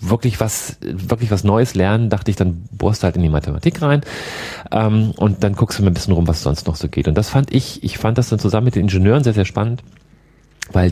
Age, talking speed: 40-59, 255 wpm